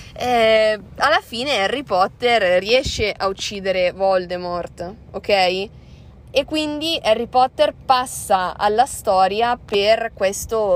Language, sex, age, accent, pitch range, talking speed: Italian, female, 20-39, native, 190-245 Hz, 100 wpm